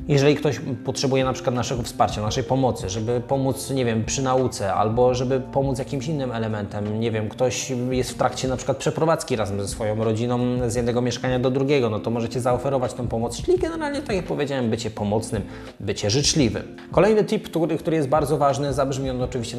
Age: 20-39